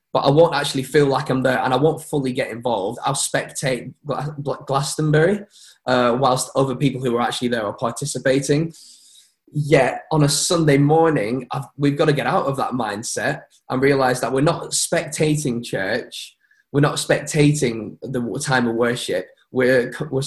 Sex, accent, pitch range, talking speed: male, British, 120-150 Hz, 170 wpm